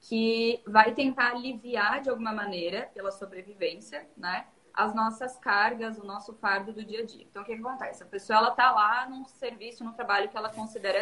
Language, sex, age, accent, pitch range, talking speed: Portuguese, female, 20-39, Brazilian, 205-255 Hz, 200 wpm